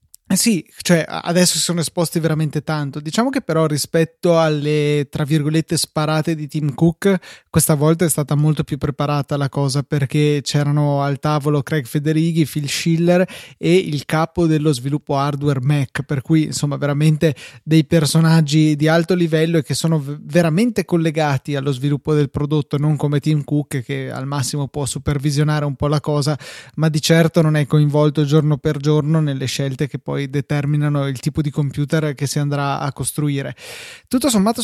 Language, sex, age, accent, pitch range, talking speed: Italian, male, 20-39, native, 145-165 Hz, 170 wpm